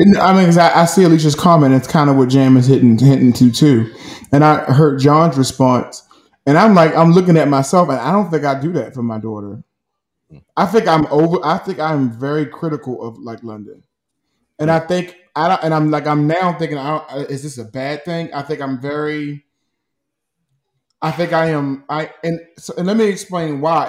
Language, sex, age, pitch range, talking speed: English, male, 20-39, 135-165 Hz, 210 wpm